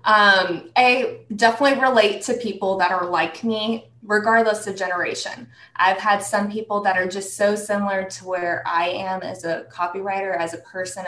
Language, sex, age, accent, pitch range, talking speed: English, female, 20-39, American, 180-225 Hz, 175 wpm